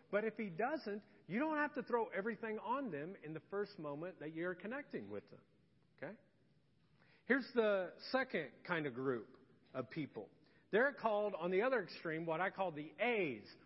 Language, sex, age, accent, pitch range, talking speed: English, male, 40-59, American, 195-265 Hz, 180 wpm